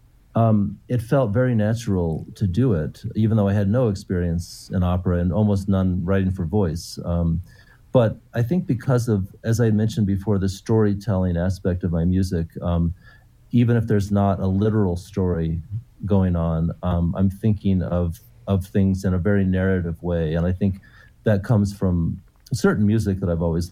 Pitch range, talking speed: 90-110 Hz, 175 wpm